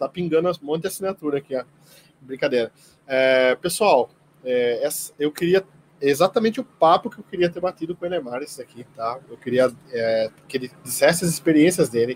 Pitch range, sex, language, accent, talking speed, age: 130-170 Hz, male, Portuguese, Brazilian, 185 wpm, 20-39